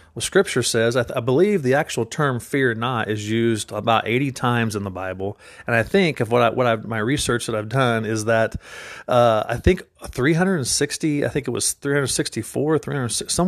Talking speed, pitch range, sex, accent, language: 195 wpm, 110-135 Hz, male, American, English